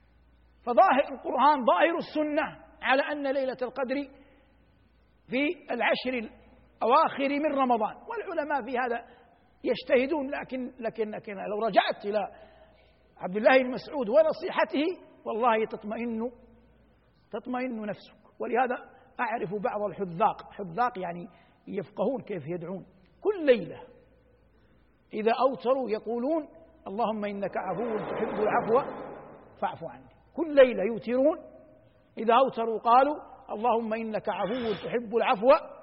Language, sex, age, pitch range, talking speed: Arabic, male, 60-79, 220-295 Hz, 105 wpm